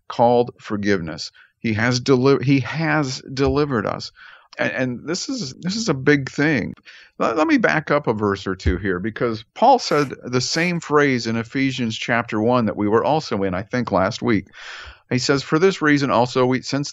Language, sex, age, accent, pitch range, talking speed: English, male, 50-69, American, 115-140 Hz, 195 wpm